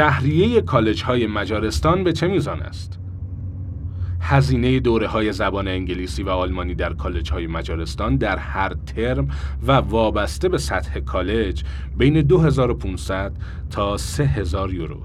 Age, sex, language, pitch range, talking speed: 30-49, male, Persian, 80-120 Hz, 115 wpm